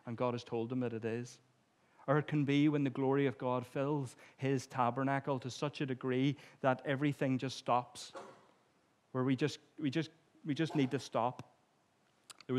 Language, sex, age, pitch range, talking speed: English, male, 30-49, 130-155 Hz, 185 wpm